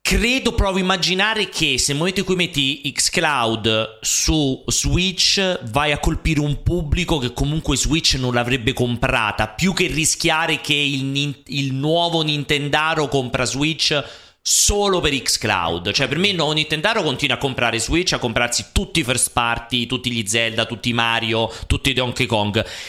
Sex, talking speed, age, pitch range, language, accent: male, 165 wpm, 30-49, 115-155 Hz, Italian, native